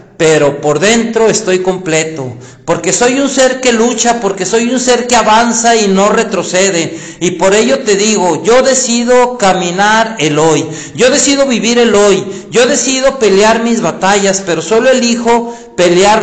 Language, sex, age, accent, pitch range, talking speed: Spanish, male, 50-69, Mexican, 175-235 Hz, 165 wpm